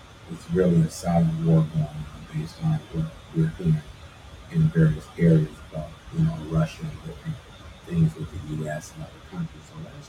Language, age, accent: English, 40-59, American